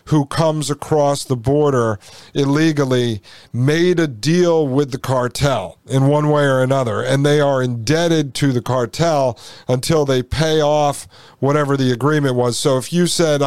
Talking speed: 160 wpm